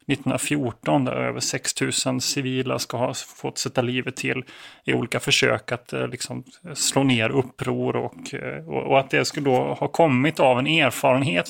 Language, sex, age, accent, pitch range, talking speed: Swedish, male, 30-49, native, 130-155 Hz, 160 wpm